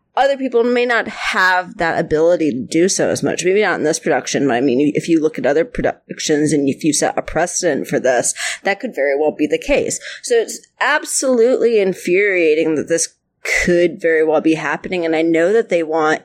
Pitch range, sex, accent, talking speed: 160-235 Hz, female, American, 215 wpm